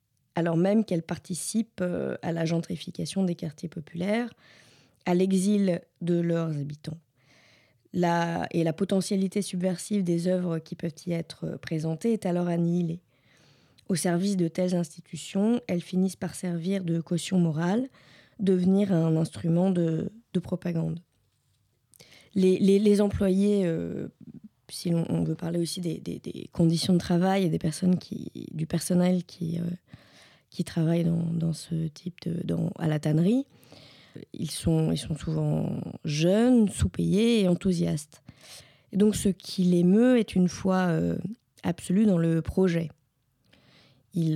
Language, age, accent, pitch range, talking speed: French, 20-39, French, 160-185 Hz, 140 wpm